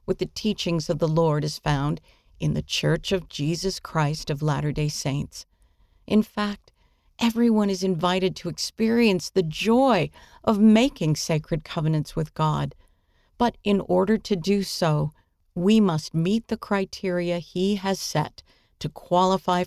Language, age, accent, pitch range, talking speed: English, 50-69, American, 155-205 Hz, 145 wpm